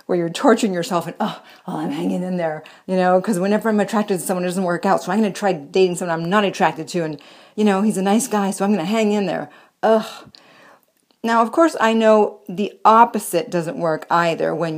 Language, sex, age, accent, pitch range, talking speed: English, female, 40-59, American, 175-225 Hz, 245 wpm